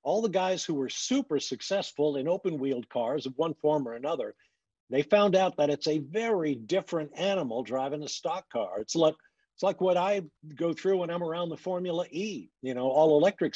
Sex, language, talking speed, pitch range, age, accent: male, English, 200 wpm, 145-190 Hz, 50-69, American